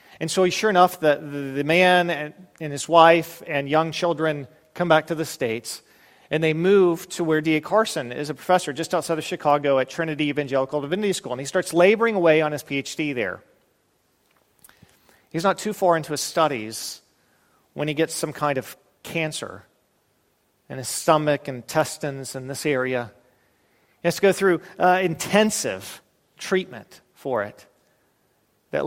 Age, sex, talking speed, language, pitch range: 40-59, male, 165 wpm, English, 140-170 Hz